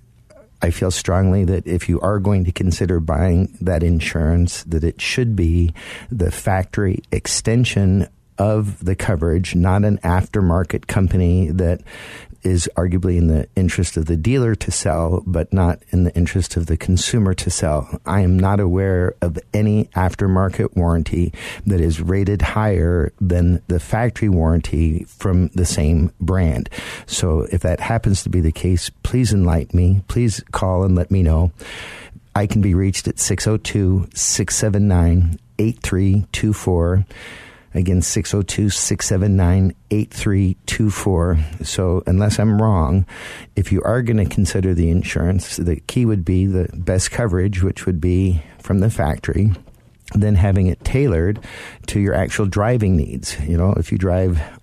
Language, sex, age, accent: English, male, 50-69, American